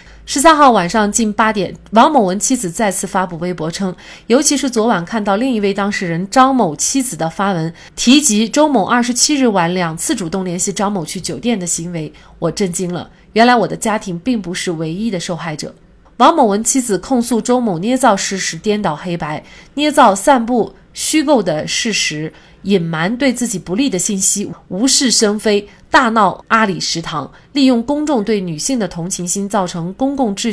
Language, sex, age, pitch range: Chinese, female, 30-49, 175-235 Hz